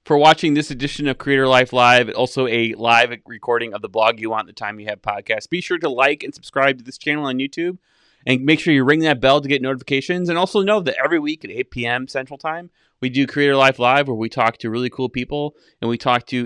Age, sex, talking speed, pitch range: 30-49, male, 255 wpm, 115-145 Hz